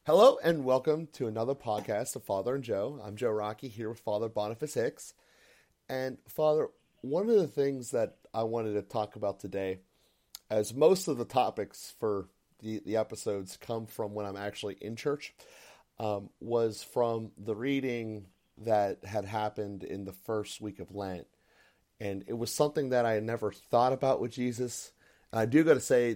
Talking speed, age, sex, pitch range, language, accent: 180 wpm, 30-49, male, 100-120 Hz, English, American